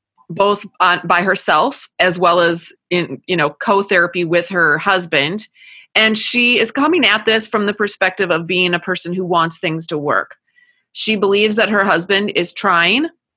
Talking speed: 175 wpm